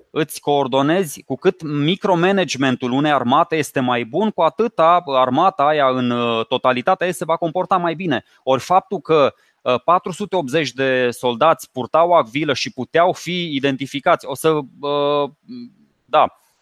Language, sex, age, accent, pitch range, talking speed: Romanian, male, 20-39, native, 140-175 Hz, 130 wpm